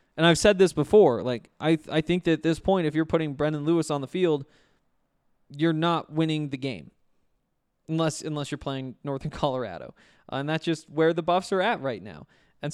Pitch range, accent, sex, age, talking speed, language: 145-175 Hz, American, male, 20-39, 205 wpm, English